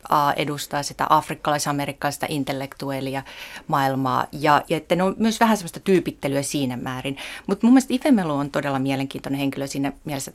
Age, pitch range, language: 30-49, 145-180 Hz, Finnish